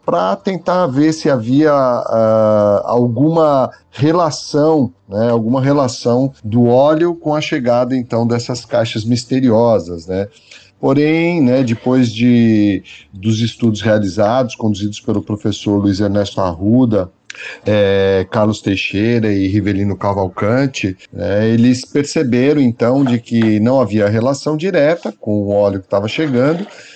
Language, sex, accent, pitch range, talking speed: Portuguese, male, Brazilian, 110-135 Hz, 125 wpm